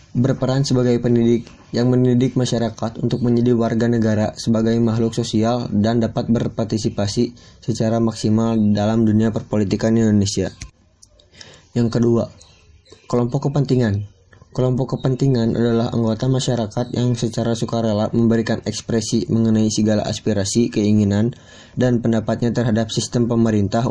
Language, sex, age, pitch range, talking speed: Indonesian, male, 20-39, 110-120 Hz, 115 wpm